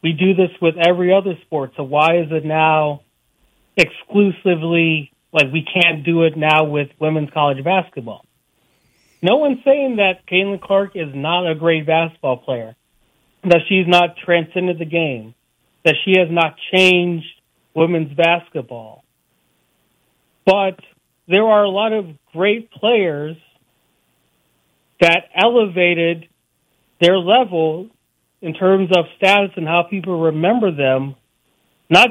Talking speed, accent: 130 wpm, American